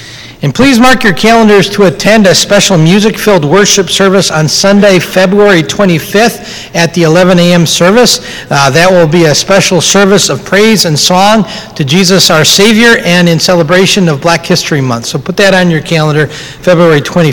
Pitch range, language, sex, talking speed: 150-200 Hz, English, male, 175 wpm